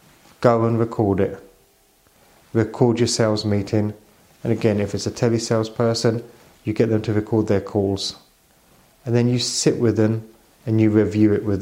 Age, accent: 30-49, British